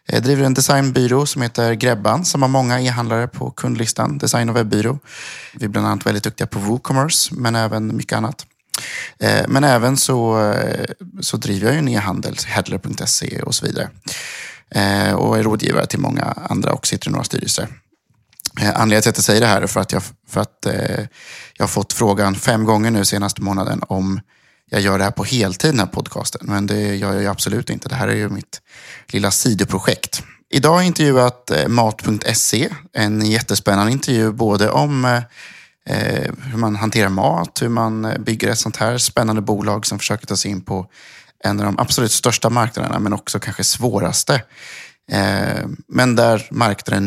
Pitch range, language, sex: 100-125 Hz, Swedish, male